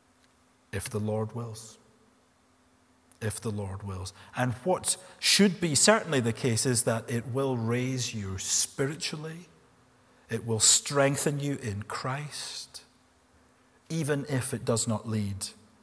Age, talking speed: 40-59, 130 wpm